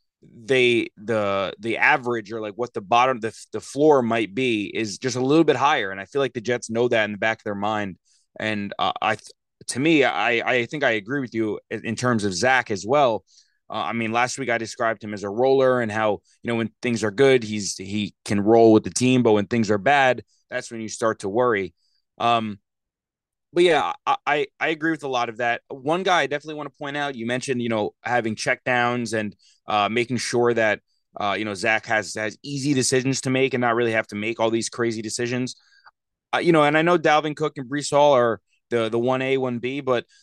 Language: English